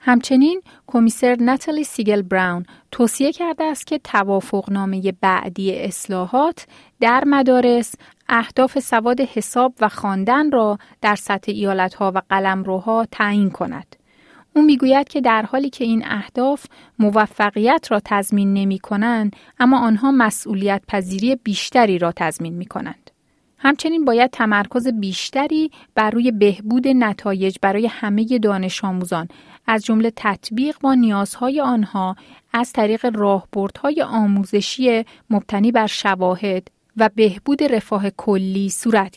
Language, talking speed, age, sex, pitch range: Persian, 120 wpm, 30-49, female, 200-255 Hz